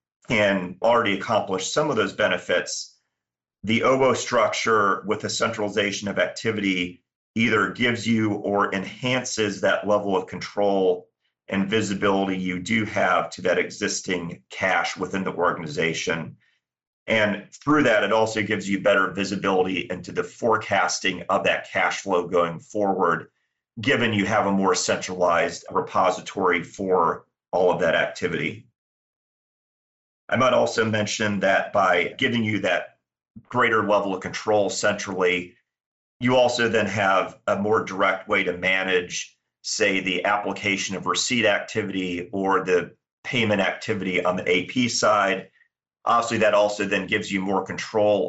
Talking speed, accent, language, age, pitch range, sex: 140 wpm, American, English, 40-59, 95-110 Hz, male